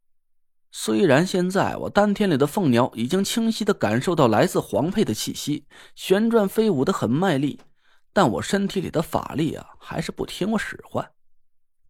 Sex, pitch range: male, 160-210 Hz